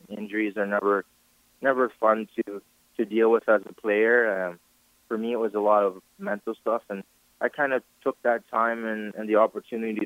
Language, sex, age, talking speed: English, male, 20-39, 195 wpm